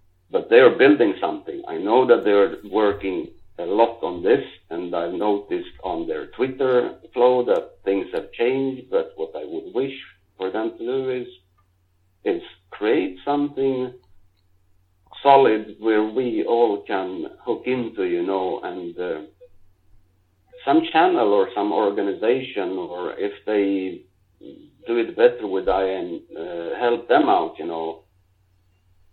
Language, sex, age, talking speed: Italian, male, 50-69, 140 wpm